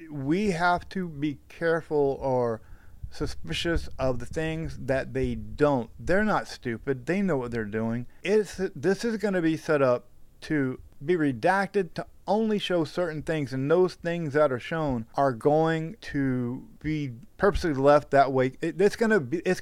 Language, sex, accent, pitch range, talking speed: English, male, American, 120-165 Hz, 170 wpm